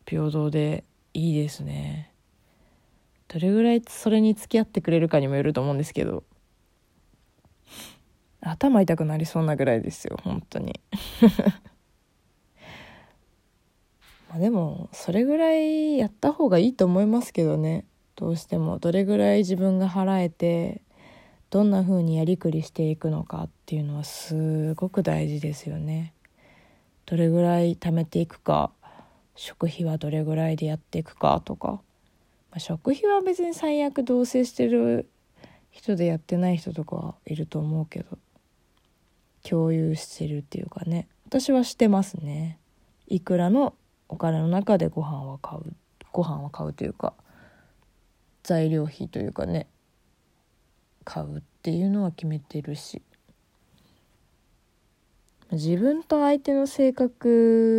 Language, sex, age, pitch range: Japanese, female, 20-39, 155-205 Hz